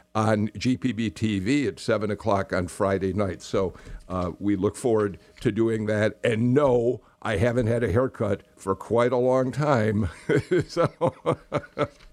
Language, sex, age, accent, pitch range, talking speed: English, male, 60-79, American, 105-140 Hz, 150 wpm